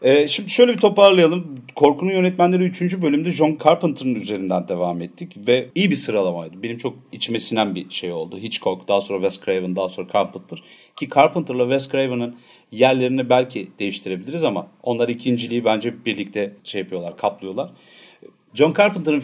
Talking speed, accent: 155 wpm, native